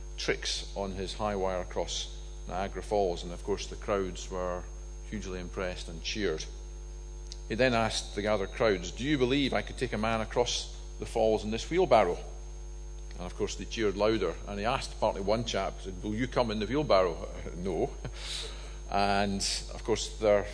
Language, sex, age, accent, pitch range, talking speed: English, male, 40-59, British, 70-105 Hz, 180 wpm